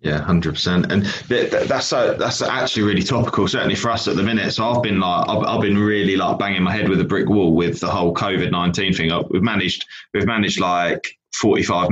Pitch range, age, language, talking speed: 90-105 Hz, 20-39, English, 225 wpm